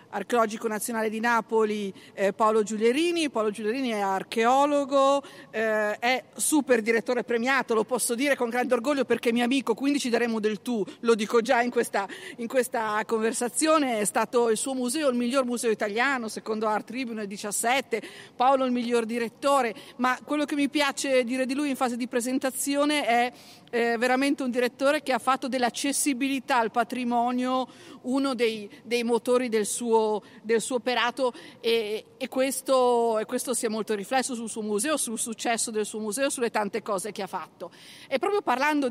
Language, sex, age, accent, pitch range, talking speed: Italian, female, 50-69, native, 225-270 Hz, 170 wpm